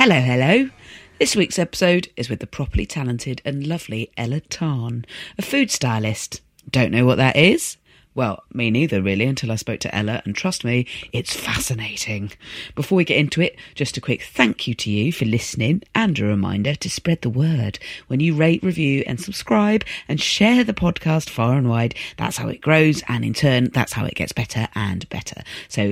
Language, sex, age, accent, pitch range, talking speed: English, female, 40-59, British, 110-150 Hz, 195 wpm